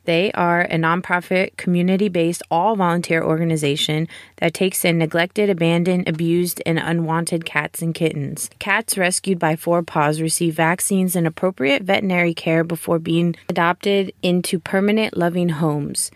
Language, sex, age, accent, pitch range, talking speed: English, female, 20-39, American, 160-185 Hz, 135 wpm